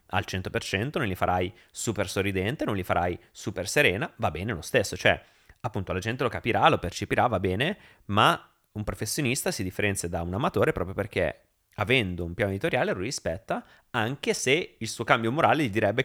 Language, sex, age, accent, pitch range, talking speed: Italian, male, 30-49, native, 95-115 Hz, 185 wpm